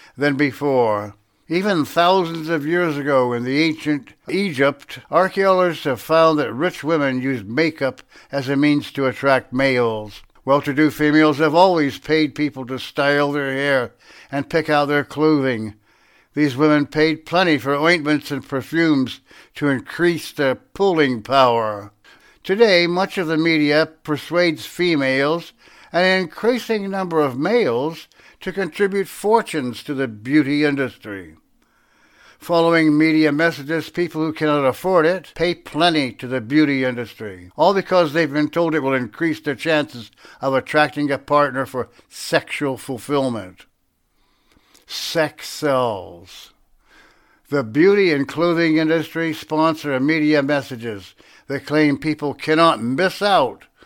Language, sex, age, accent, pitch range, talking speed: English, male, 60-79, American, 135-165 Hz, 135 wpm